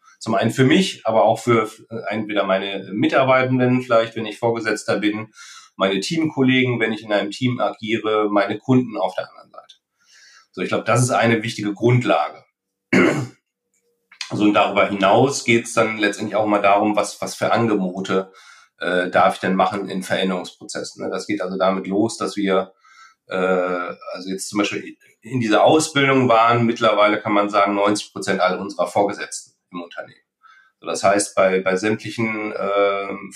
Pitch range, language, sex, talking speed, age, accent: 100-120 Hz, German, male, 170 wpm, 40-59, German